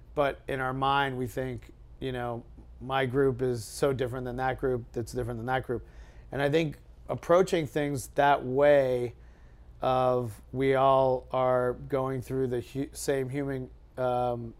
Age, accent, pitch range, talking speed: 40-59, American, 120-145 Hz, 155 wpm